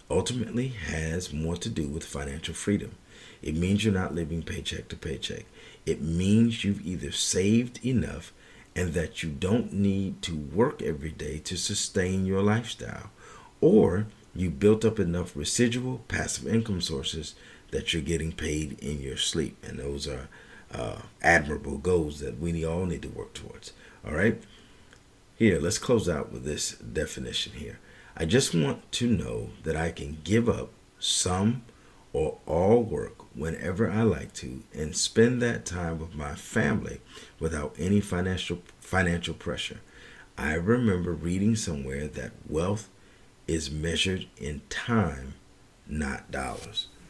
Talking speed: 150 wpm